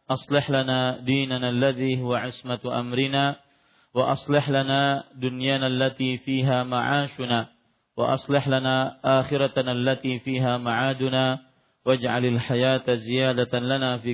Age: 40-59